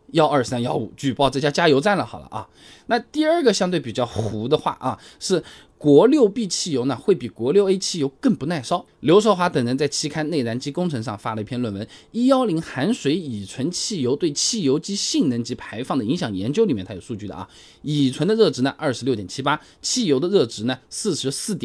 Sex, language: male, Chinese